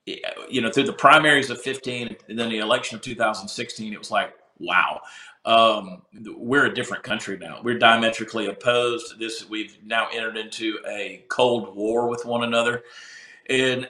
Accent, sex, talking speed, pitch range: American, male, 165 wpm, 110-135 Hz